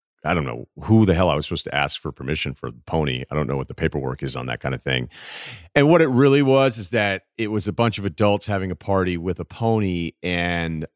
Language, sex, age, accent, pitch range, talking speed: English, male, 40-59, American, 80-100 Hz, 265 wpm